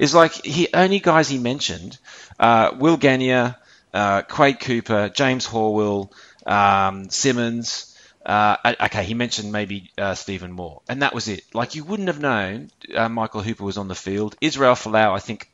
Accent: Australian